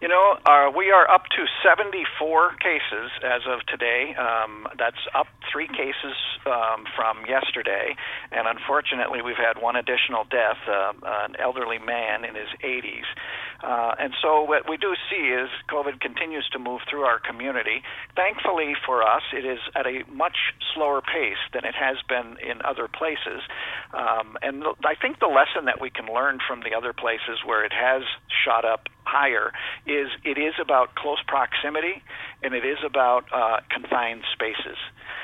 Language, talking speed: English, 170 wpm